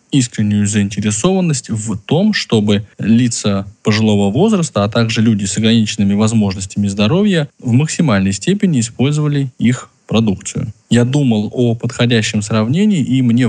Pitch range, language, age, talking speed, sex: 105-145 Hz, Russian, 10-29, 125 wpm, male